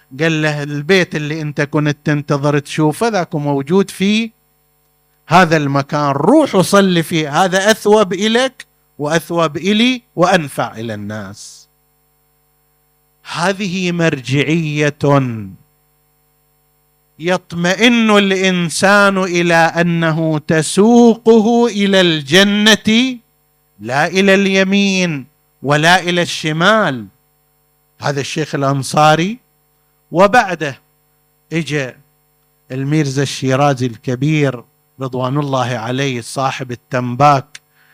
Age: 50-69